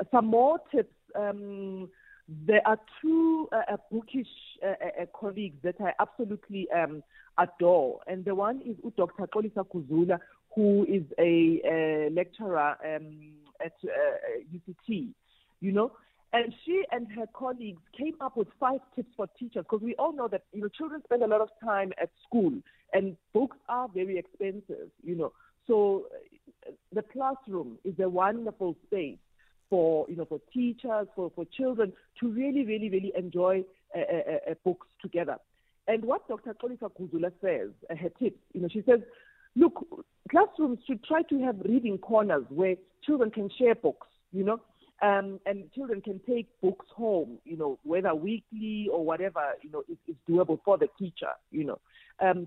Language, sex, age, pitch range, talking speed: English, female, 50-69, 185-255 Hz, 165 wpm